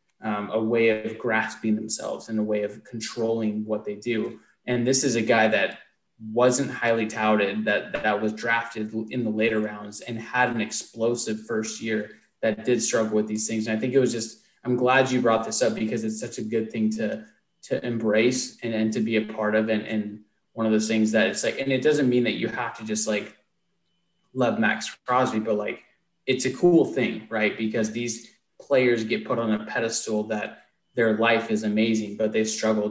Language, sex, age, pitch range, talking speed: English, male, 20-39, 110-115 Hz, 210 wpm